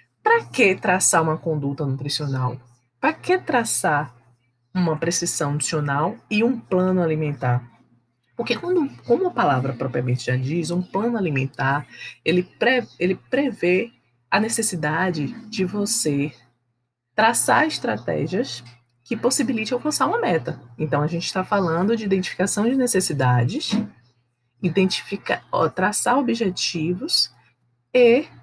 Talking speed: 120 wpm